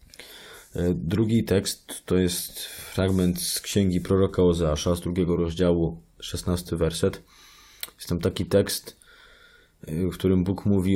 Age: 20-39